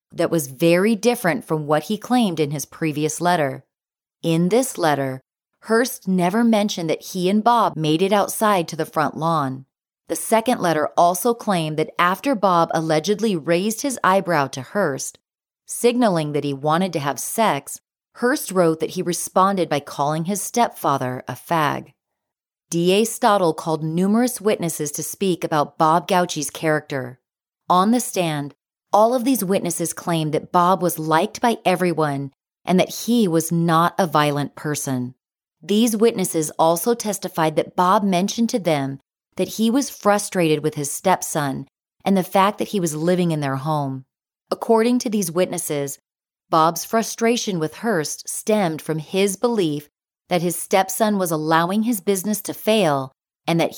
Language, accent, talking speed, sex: English, American, 160 wpm, female